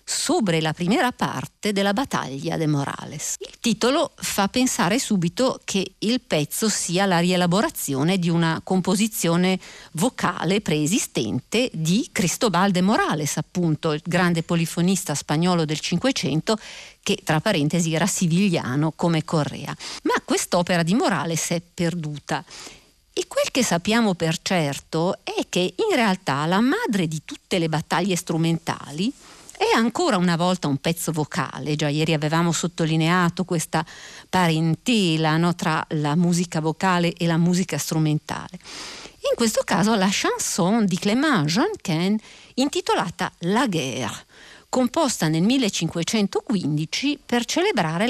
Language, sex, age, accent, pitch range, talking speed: Italian, female, 50-69, native, 160-215 Hz, 125 wpm